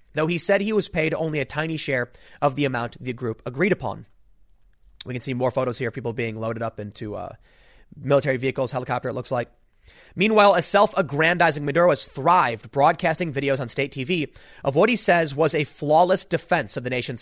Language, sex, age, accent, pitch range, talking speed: English, male, 30-49, American, 135-180 Hz, 200 wpm